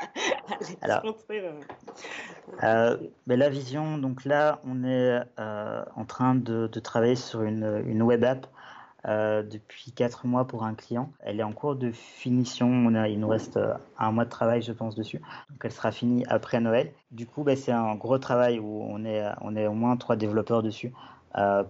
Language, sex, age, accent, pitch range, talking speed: French, male, 20-39, French, 110-125 Hz, 190 wpm